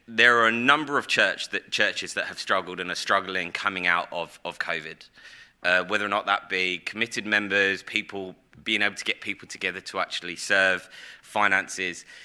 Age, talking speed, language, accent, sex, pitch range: 20-39, 185 wpm, English, British, male, 95-115 Hz